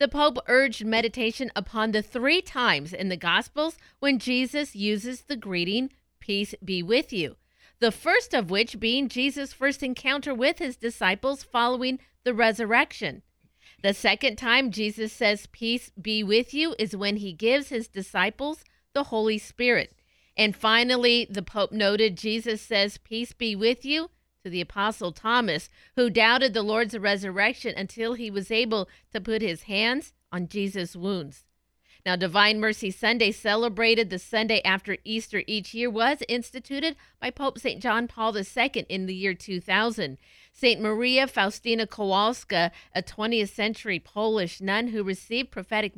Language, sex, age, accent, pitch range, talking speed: English, female, 40-59, American, 200-245 Hz, 155 wpm